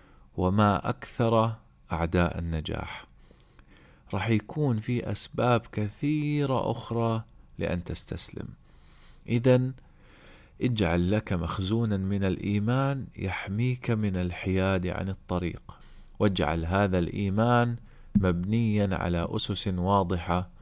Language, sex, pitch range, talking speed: Arabic, male, 90-110 Hz, 85 wpm